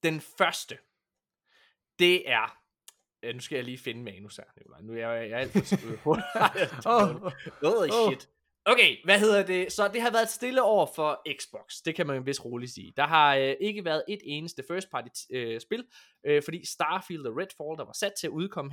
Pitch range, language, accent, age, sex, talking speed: 125-185 Hz, Danish, native, 20-39, male, 195 wpm